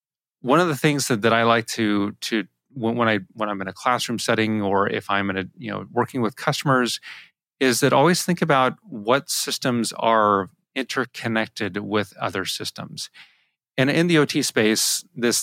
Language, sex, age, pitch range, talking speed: English, male, 30-49, 105-125 Hz, 185 wpm